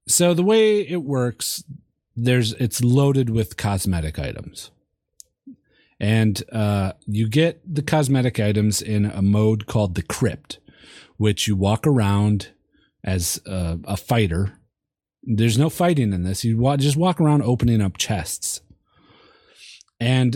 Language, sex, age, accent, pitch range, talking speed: English, male, 30-49, American, 100-125 Hz, 135 wpm